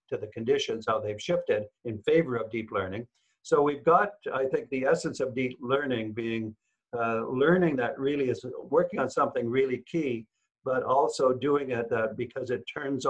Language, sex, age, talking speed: English, male, 60-79, 185 wpm